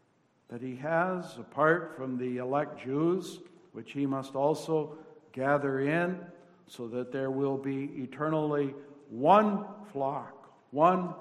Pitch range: 140-175 Hz